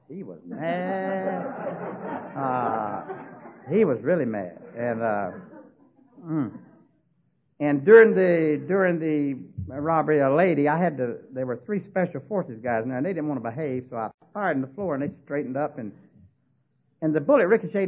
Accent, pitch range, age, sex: American, 125-185 Hz, 60-79, male